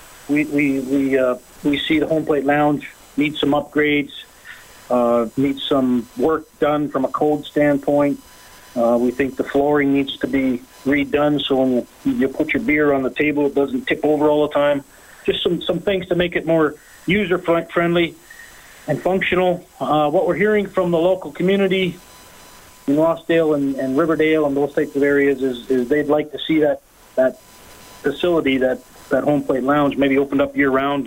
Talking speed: 185 wpm